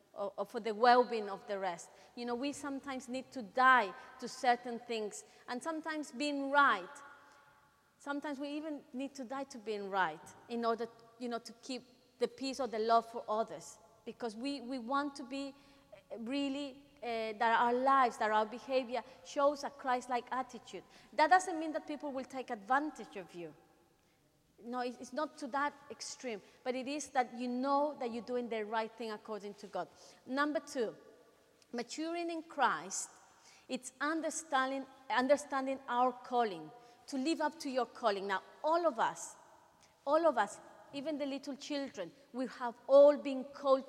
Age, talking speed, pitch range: 30-49, 170 wpm, 230-285 Hz